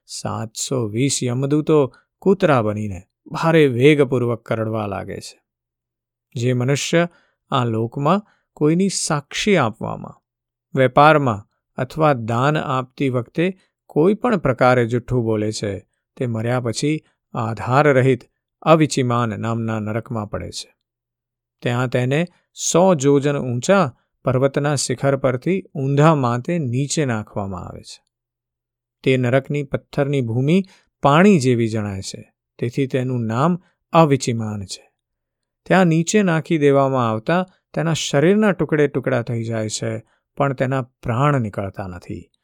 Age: 50-69